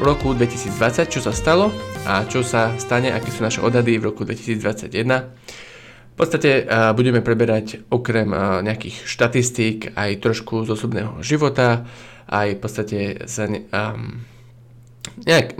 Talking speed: 140 wpm